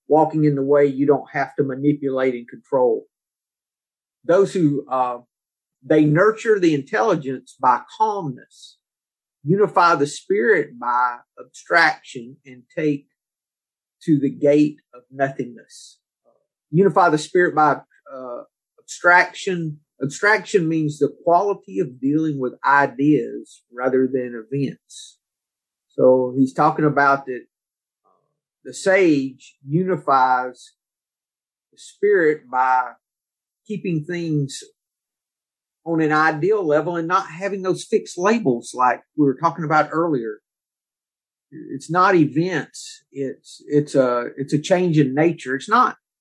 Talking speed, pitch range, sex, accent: 120 wpm, 135-190 Hz, male, American